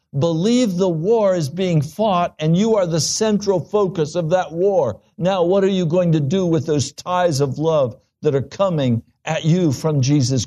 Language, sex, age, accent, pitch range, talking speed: English, male, 60-79, American, 110-170 Hz, 195 wpm